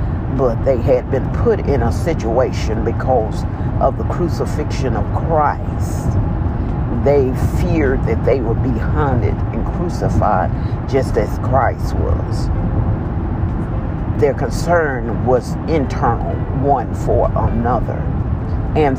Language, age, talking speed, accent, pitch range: English, 50-69, 110 wpm, American, 100-125 Hz